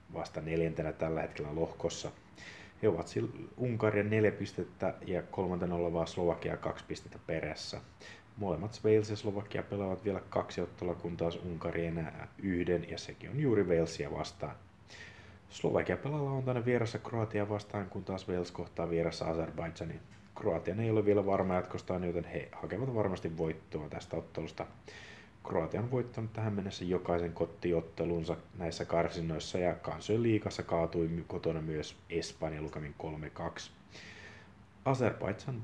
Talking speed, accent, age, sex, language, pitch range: 135 wpm, native, 30-49, male, Finnish, 85-105 Hz